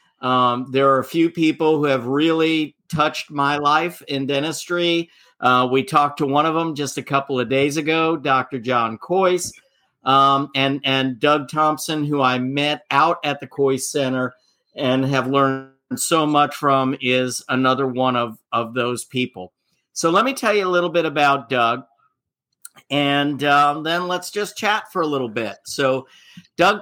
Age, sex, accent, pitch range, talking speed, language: 50-69, male, American, 135-165 Hz, 175 wpm, English